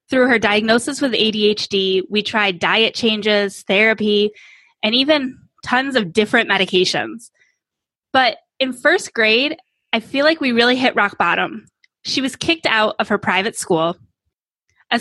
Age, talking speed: 20-39, 150 wpm